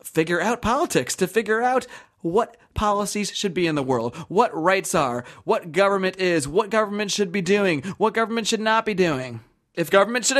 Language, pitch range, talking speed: English, 145-215 Hz, 190 wpm